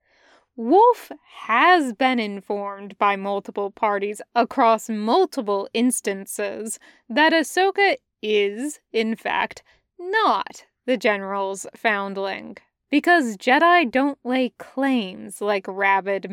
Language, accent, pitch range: English, American, 205-265 Hz